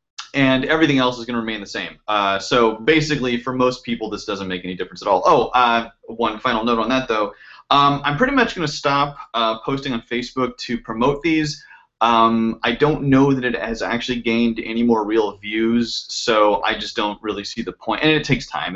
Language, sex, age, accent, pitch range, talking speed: English, male, 30-49, American, 115-135 Hz, 220 wpm